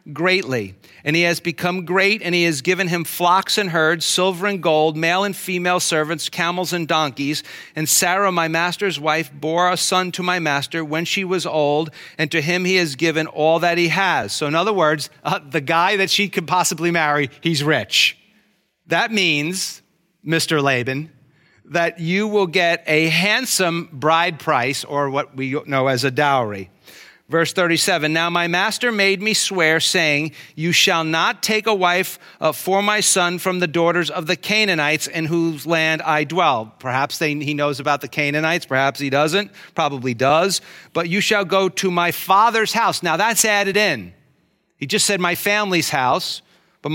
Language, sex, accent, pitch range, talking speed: English, male, American, 155-185 Hz, 180 wpm